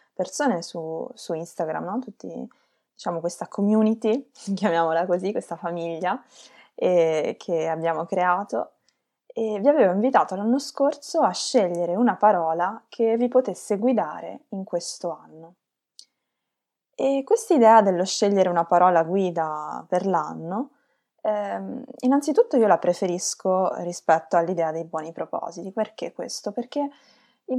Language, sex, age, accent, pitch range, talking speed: Italian, female, 20-39, native, 170-235 Hz, 125 wpm